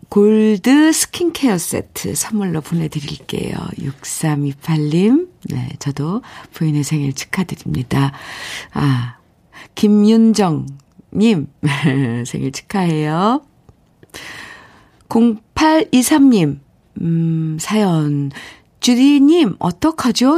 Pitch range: 150-235 Hz